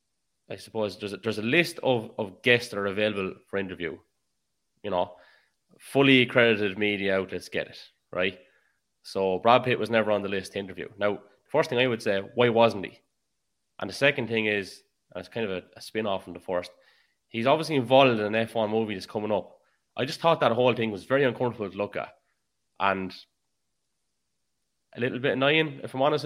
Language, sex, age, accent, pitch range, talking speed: English, male, 20-39, Irish, 100-120 Hz, 205 wpm